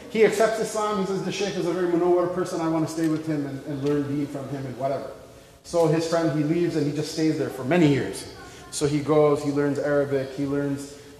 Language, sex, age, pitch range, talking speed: English, male, 20-39, 160-210 Hz, 245 wpm